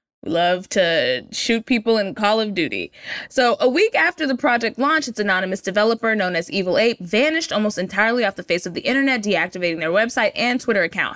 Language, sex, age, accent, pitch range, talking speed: English, female, 20-39, American, 195-295 Hz, 200 wpm